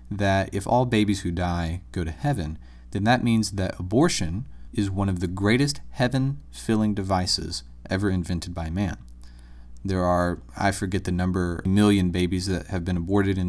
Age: 30-49